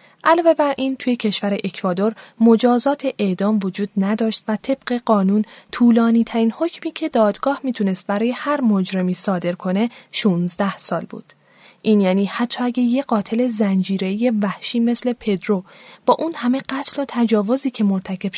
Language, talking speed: Persian, 145 wpm